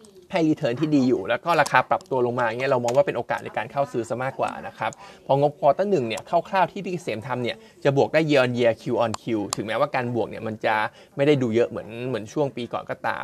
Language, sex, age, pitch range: Thai, male, 20-39, 120-155 Hz